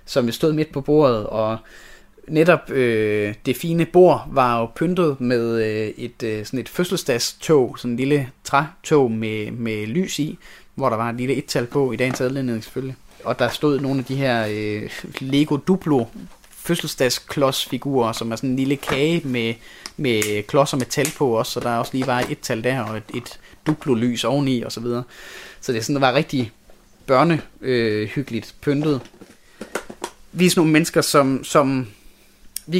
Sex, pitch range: male, 115-150 Hz